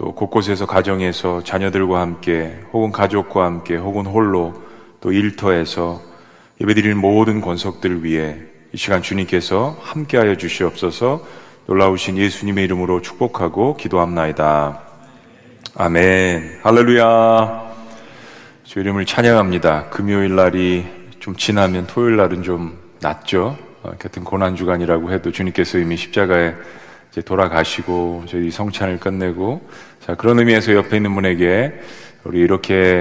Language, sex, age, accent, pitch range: Korean, male, 30-49, native, 85-105 Hz